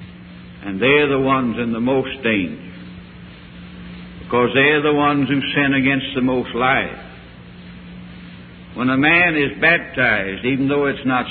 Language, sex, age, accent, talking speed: English, male, 60-79, American, 145 wpm